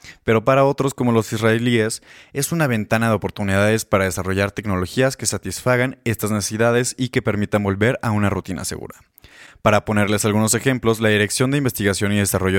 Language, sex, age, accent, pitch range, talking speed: Spanish, male, 20-39, Mexican, 100-125 Hz, 170 wpm